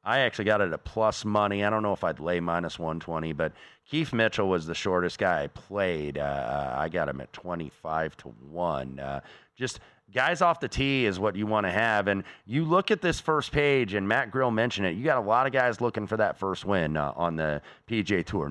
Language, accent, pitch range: English, American, 85-115 Hz